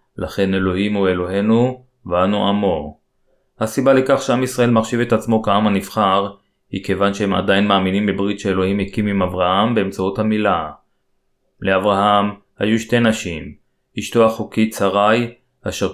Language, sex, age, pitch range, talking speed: Hebrew, male, 30-49, 100-110 Hz, 130 wpm